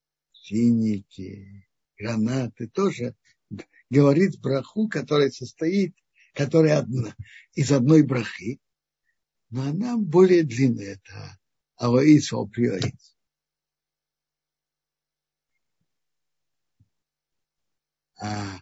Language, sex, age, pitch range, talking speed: Russian, male, 60-79, 120-170 Hz, 60 wpm